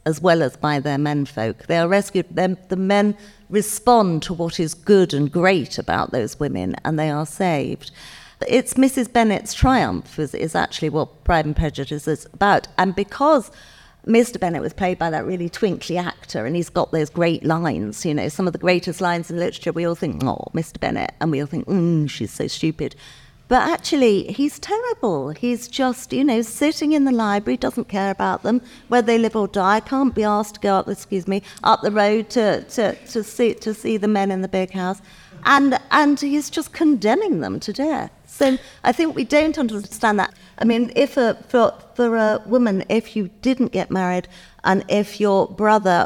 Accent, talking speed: British, 205 wpm